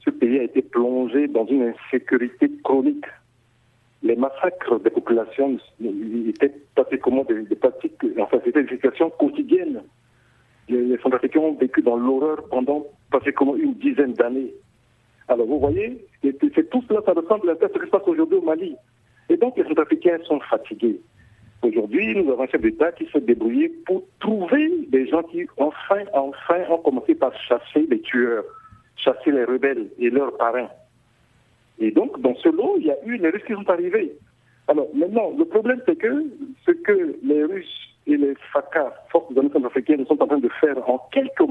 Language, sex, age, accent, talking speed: French, male, 60-79, French, 180 wpm